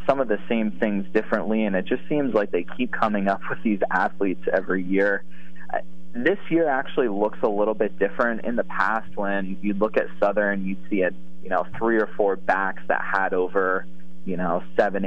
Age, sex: 20-39, male